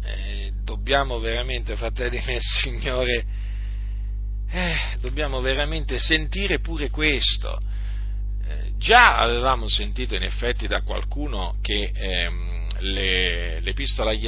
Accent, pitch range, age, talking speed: native, 100-130 Hz, 40-59, 95 wpm